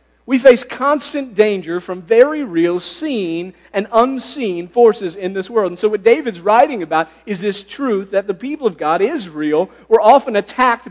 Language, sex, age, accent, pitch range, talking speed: English, male, 50-69, American, 195-265 Hz, 180 wpm